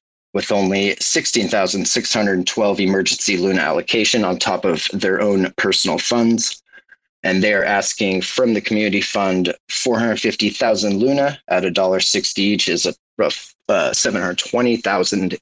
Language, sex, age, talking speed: English, male, 30-49, 115 wpm